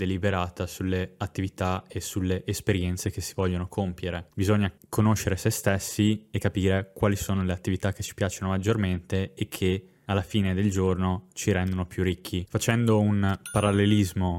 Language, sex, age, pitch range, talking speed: Italian, male, 20-39, 95-105 Hz, 155 wpm